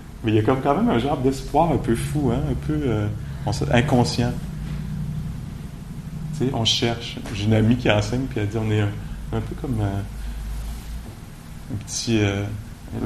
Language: English